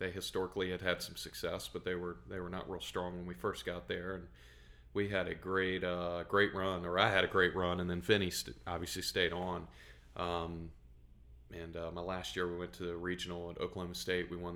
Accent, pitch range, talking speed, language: American, 85-95 Hz, 230 wpm, English